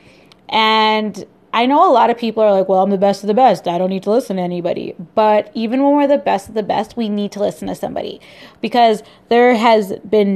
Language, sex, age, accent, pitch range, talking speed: English, female, 20-39, American, 195-245 Hz, 245 wpm